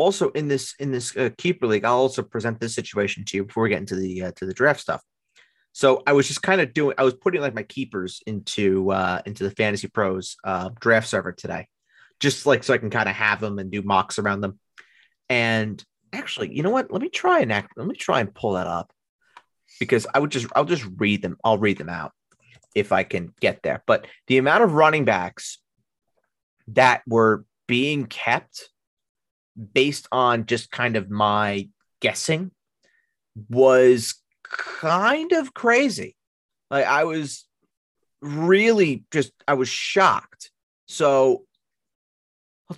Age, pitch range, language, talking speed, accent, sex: 30-49, 100-140 Hz, English, 180 wpm, American, male